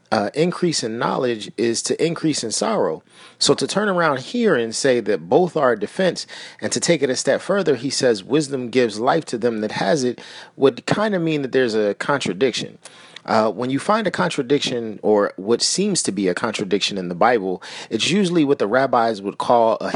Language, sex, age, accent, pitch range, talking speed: English, male, 40-59, American, 105-150 Hz, 205 wpm